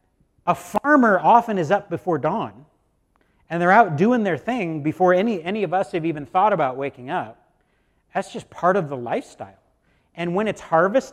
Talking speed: 185 wpm